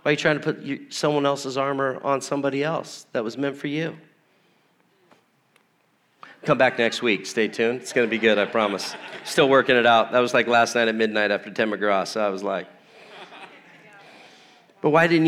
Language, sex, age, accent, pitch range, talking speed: English, male, 40-59, American, 120-170 Hz, 200 wpm